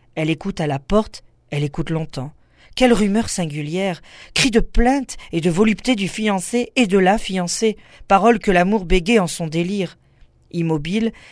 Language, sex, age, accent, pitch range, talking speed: French, female, 40-59, French, 160-200 Hz, 165 wpm